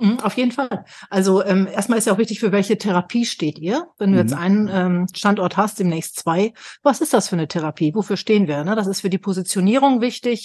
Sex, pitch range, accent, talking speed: female, 185-230 Hz, German, 230 wpm